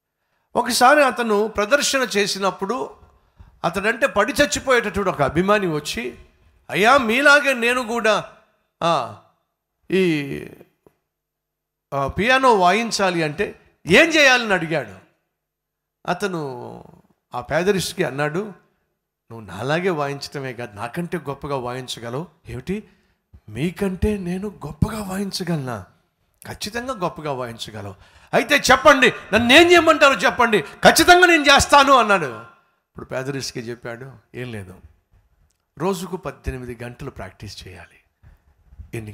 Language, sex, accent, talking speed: Telugu, male, native, 95 wpm